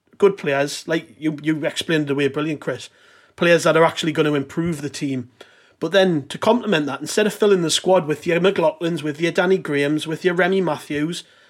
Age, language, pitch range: 30-49, English, 150-195 Hz